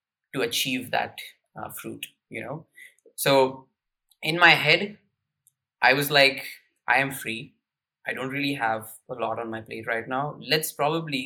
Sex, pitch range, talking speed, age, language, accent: male, 120-155 Hz, 160 wpm, 20-39, English, Indian